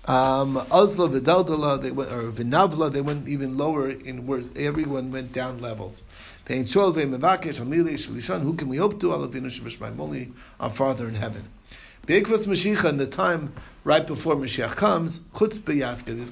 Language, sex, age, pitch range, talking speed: English, male, 50-69, 125-165 Hz, 120 wpm